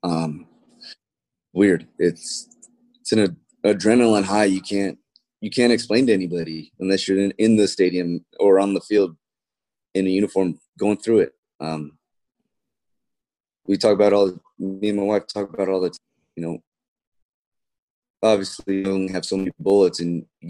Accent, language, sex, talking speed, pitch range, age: American, English, male, 160 wpm, 90-105 Hz, 30-49